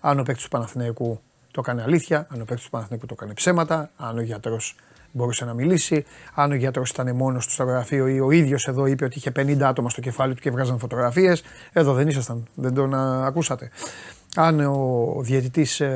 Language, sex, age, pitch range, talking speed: Greek, male, 30-49, 130-160 Hz, 205 wpm